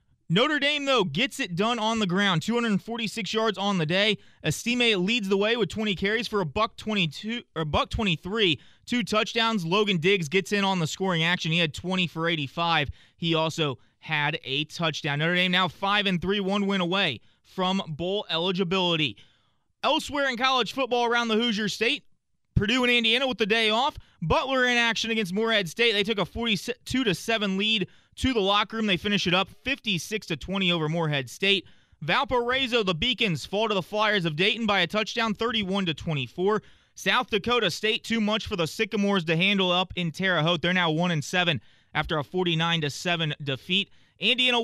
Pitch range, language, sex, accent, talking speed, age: 170-225 Hz, English, male, American, 180 wpm, 20-39